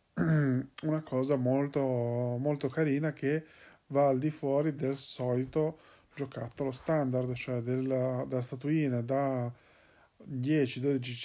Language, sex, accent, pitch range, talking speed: Italian, male, native, 125-150 Hz, 105 wpm